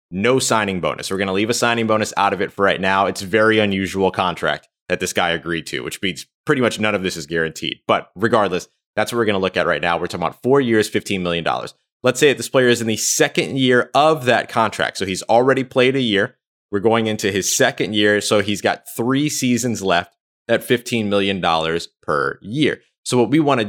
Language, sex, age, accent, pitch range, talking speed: English, male, 20-39, American, 95-120 Hz, 240 wpm